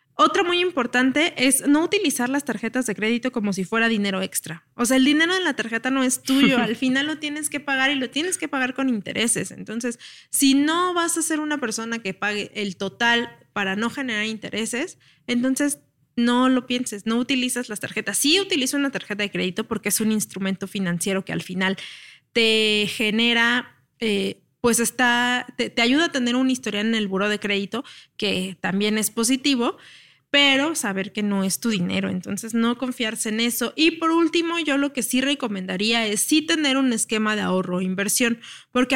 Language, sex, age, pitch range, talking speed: Spanish, female, 20-39, 205-265 Hz, 195 wpm